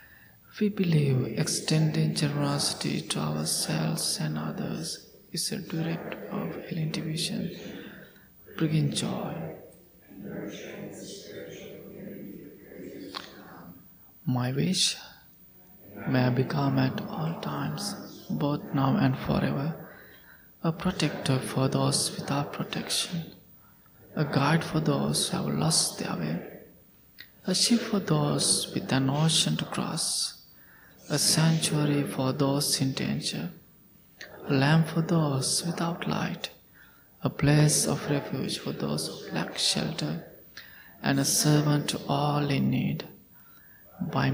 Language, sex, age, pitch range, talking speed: English, male, 20-39, 135-165 Hz, 110 wpm